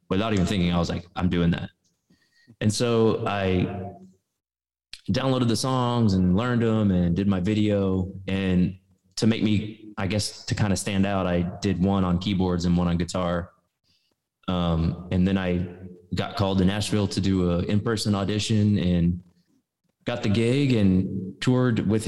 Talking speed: 170 wpm